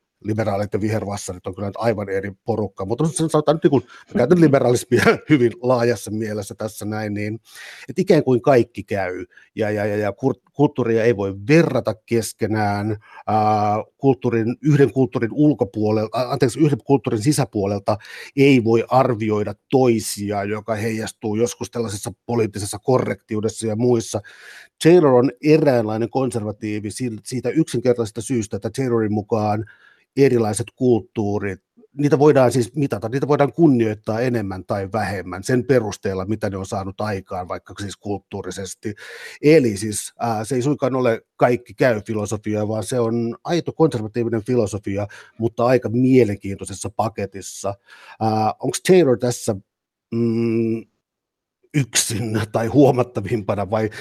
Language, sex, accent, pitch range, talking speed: Finnish, male, native, 105-125 Hz, 125 wpm